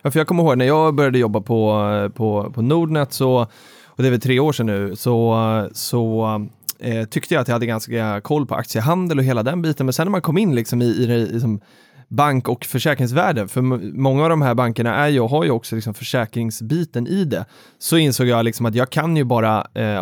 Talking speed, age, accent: 235 wpm, 30-49, native